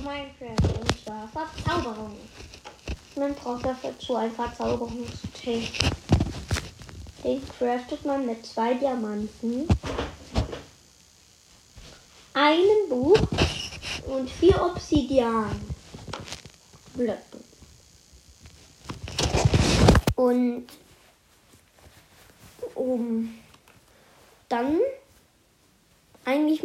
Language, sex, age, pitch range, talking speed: German, female, 20-39, 230-295 Hz, 60 wpm